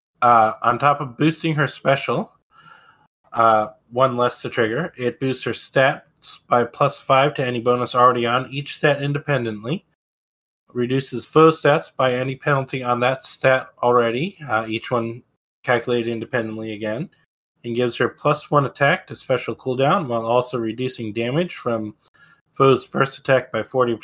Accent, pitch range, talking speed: American, 120-145 Hz, 155 wpm